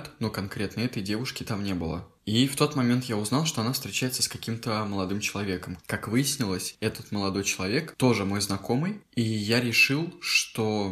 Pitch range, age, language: 100-120 Hz, 20-39, Russian